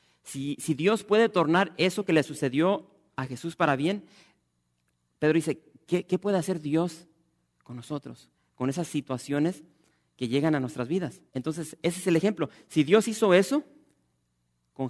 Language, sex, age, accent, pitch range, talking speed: English, male, 40-59, Mexican, 110-155 Hz, 160 wpm